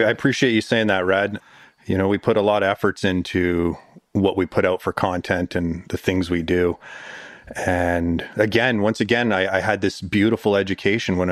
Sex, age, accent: male, 30-49, American